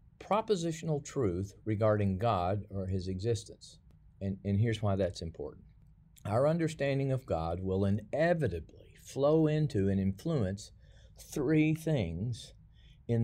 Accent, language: American, English